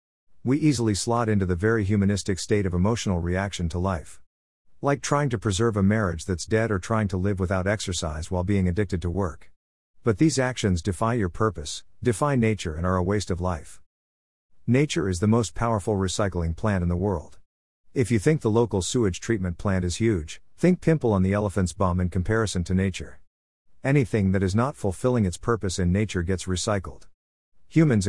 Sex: male